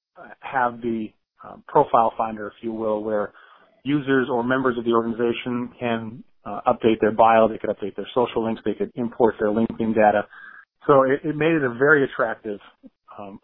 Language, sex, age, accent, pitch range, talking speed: English, male, 40-59, American, 115-135 Hz, 185 wpm